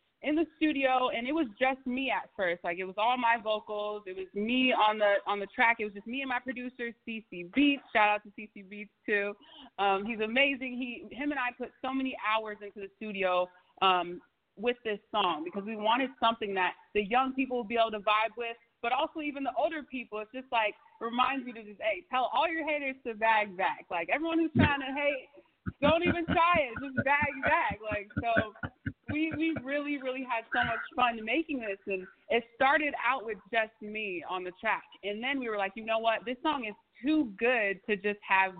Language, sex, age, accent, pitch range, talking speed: English, female, 20-39, American, 200-265 Hz, 225 wpm